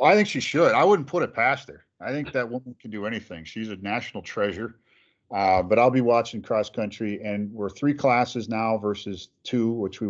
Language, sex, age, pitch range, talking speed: English, male, 40-59, 100-120 Hz, 220 wpm